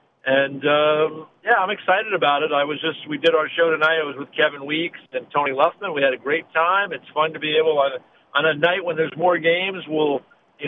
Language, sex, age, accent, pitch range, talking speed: English, male, 50-69, American, 150-180 Hz, 235 wpm